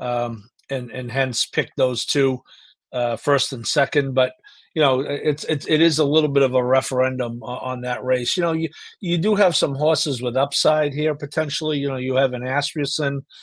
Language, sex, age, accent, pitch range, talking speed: English, male, 50-69, American, 130-165 Hz, 205 wpm